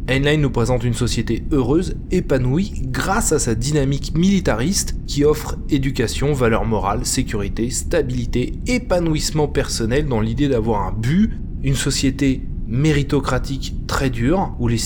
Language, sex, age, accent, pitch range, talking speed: French, male, 20-39, French, 110-150 Hz, 135 wpm